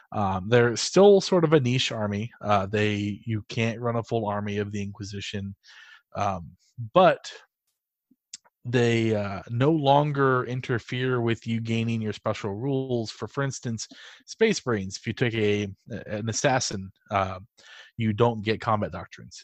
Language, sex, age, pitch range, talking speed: English, male, 20-39, 105-130 Hz, 150 wpm